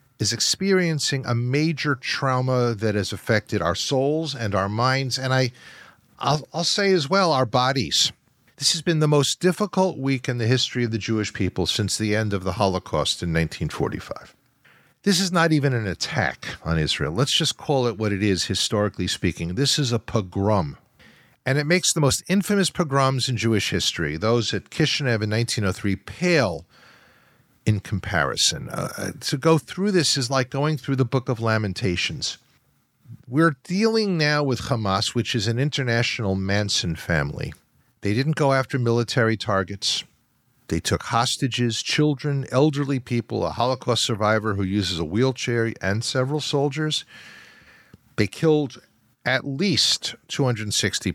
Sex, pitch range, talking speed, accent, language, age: male, 105-145 Hz, 155 wpm, American, English, 50-69